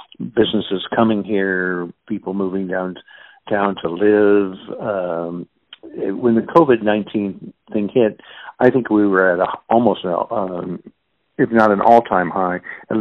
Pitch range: 95-105 Hz